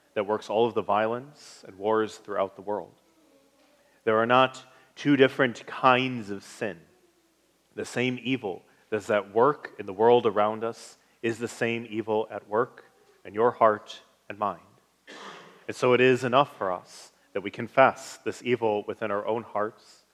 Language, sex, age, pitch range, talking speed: English, male, 30-49, 110-125 Hz, 170 wpm